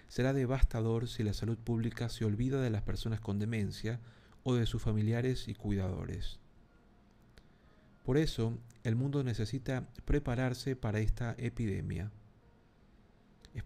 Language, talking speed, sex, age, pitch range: Spanish, 125 wpm, male, 40-59, 110-125 Hz